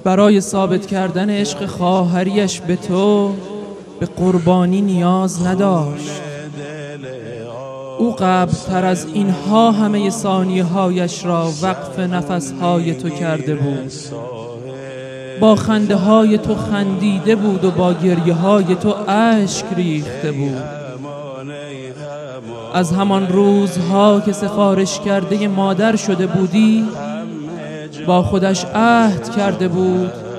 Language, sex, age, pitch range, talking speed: Persian, male, 20-39, 160-205 Hz, 105 wpm